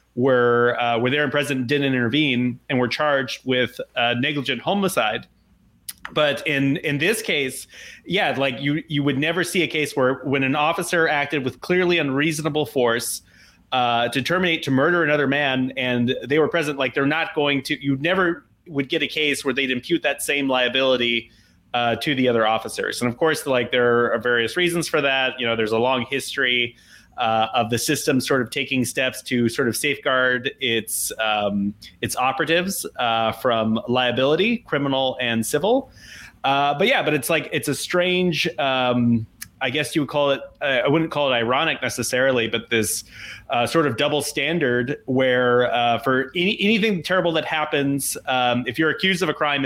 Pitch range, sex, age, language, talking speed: 120-150 Hz, male, 30-49, English, 185 wpm